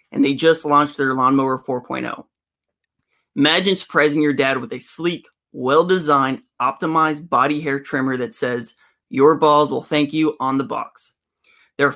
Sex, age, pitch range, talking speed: male, 30-49, 135-160 Hz, 155 wpm